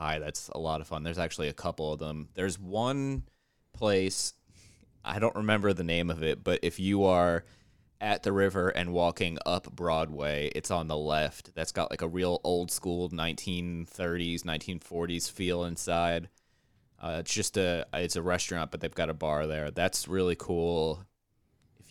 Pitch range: 85-100 Hz